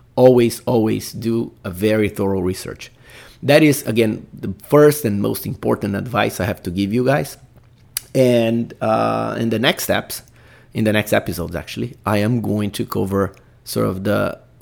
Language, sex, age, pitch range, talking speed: English, male, 30-49, 90-115 Hz, 170 wpm